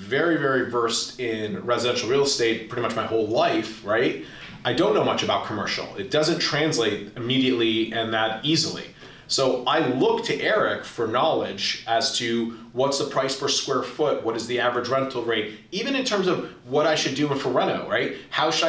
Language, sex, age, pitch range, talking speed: English, male, 30-49, 115-155 Hz, 195 wpm